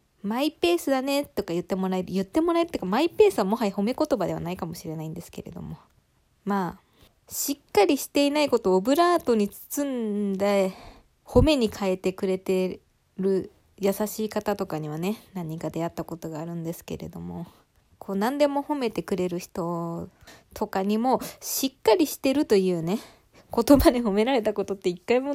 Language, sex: Japanese, female